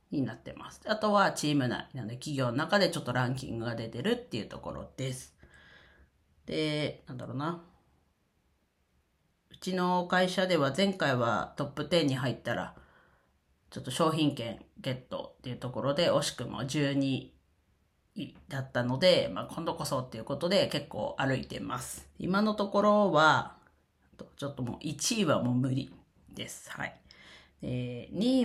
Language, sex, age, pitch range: Japanese, female, 40-59, 125-165 Hz